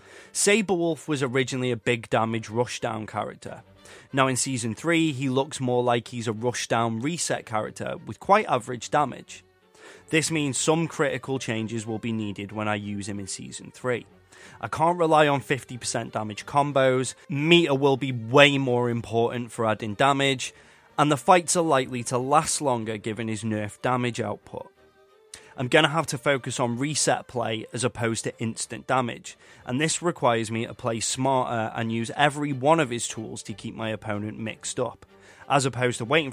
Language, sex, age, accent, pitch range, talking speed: English, male, 20-39, British, 110-135 Hz, 175 wpm